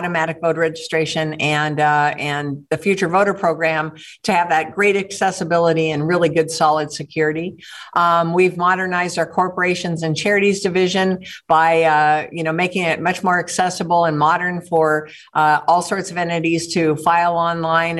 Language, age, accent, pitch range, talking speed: English, 50-69, American, 160-180 Hz, 160 wpm